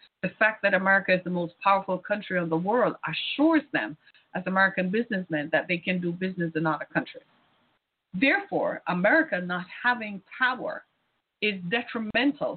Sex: female